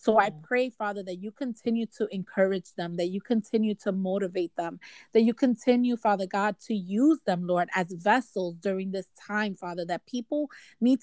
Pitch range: 185-230 Hz